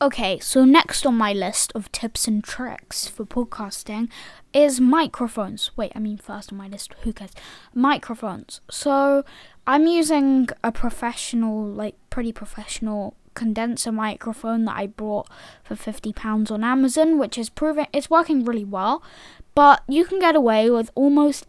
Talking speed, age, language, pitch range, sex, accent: 155 wpm, 10-29, English, 220-275 Hz, female, British